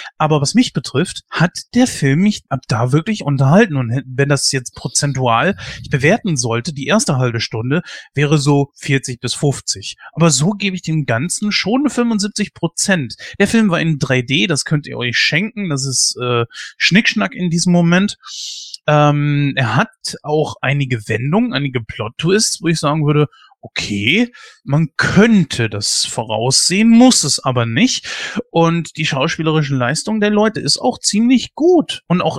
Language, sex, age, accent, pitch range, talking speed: German, male, 30-49, German, 140-180 Hz, 165 wpm